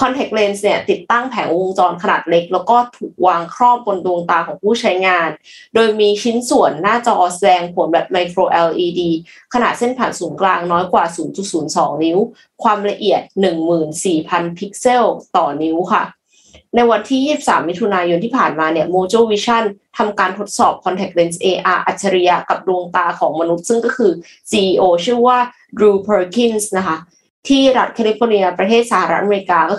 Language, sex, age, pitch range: Thai, female, 20-39, 180-230 Hz